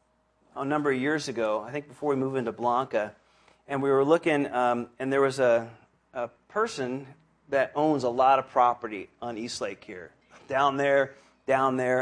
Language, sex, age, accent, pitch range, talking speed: English, male, 40-59, American, 130-180 Hz, 185 wpm